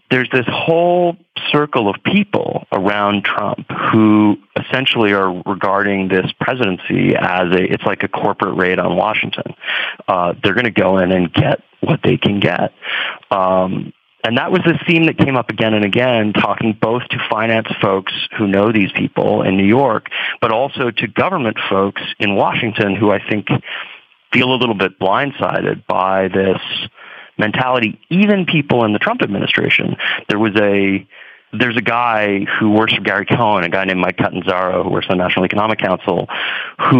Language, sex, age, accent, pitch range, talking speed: English, male, 30-49, American, 95-125 Hz, 175 wpm